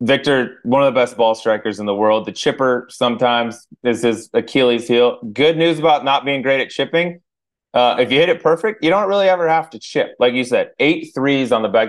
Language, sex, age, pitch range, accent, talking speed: English, male, 20-39, 100-140 Hz, American, 230 wpm